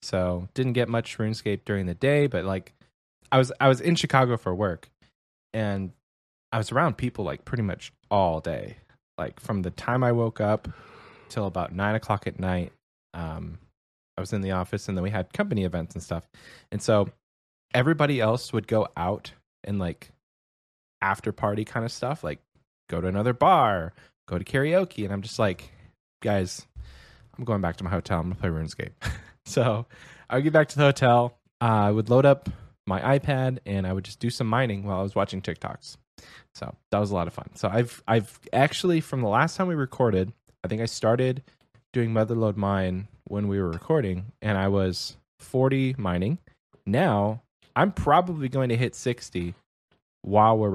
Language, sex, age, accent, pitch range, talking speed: English, male, 20-39, American, 95-125 Hz, 190 wpm